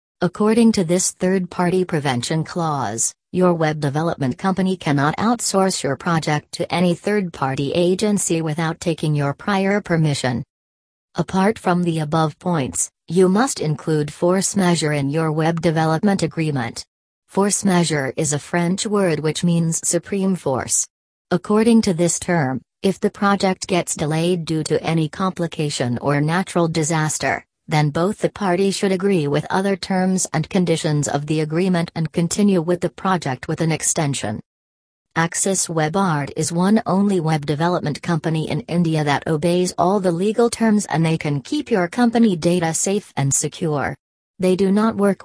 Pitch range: 155-185 Hz